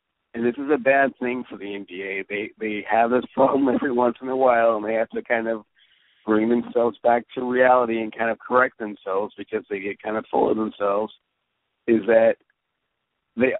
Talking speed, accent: 205 wpm, American